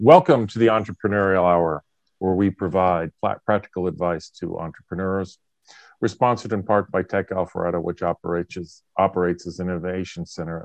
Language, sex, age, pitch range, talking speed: English, male, 40-59, 90-105 Hz, 150 wpm